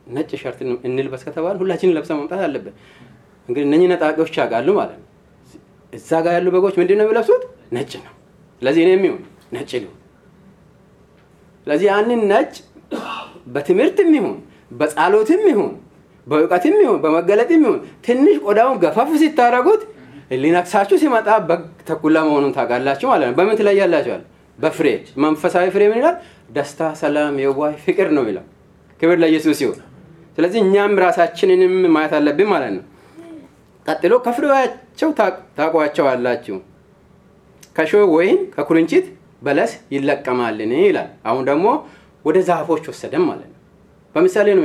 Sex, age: male, 30-49